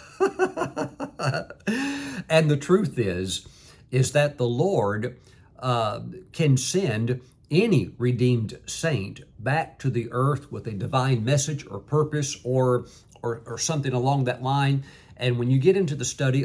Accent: American